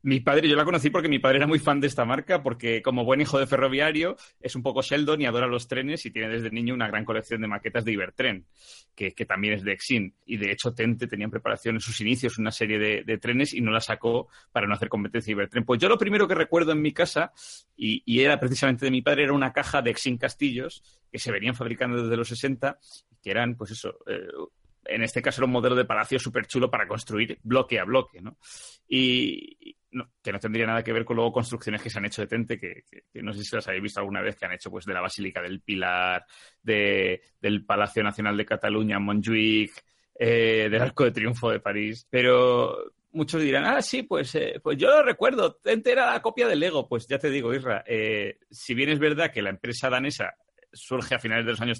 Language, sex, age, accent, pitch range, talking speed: Spanish, male, 30-49, Spanish, 110-135 Hz, 240 wpm